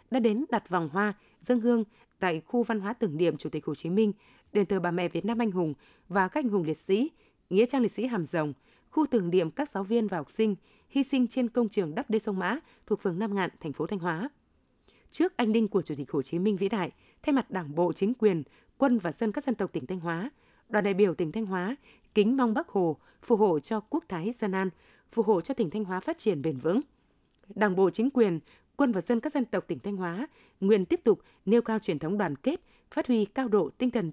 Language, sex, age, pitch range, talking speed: Vietnamese, female, 20-39, 185-235 Hz, 255 wpm